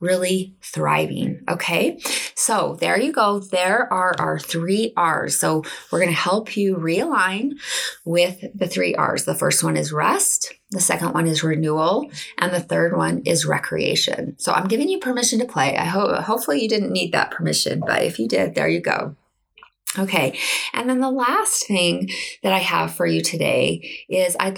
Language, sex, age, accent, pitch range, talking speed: English, female, 20-39, American, 175-220 Hz, 185 wpm